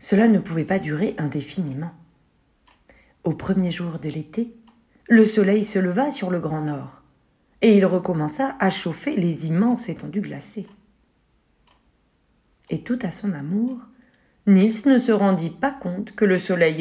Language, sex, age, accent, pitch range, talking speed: French, female, 40-59, French, 160-225 Hz, 150 wpm